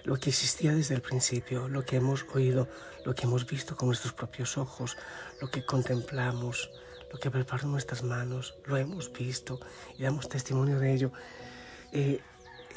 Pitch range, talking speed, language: 120-140 Hz, 165 wpm, Spanish